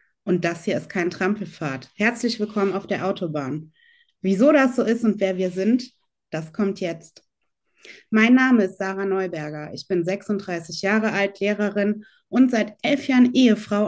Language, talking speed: German, 165 wpm